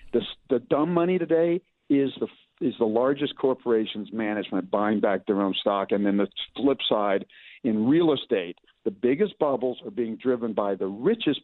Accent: American